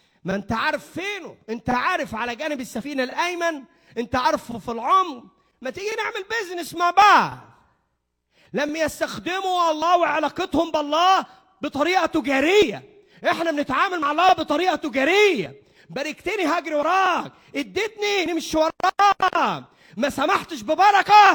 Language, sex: Arabic, male